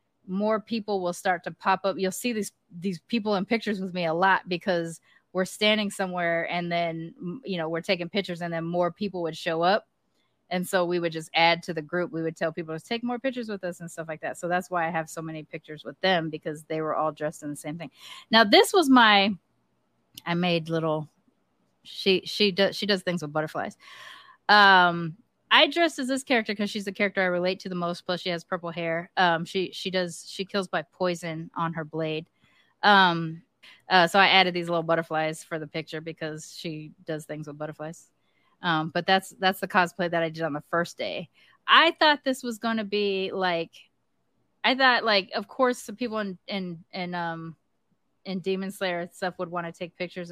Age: 20-39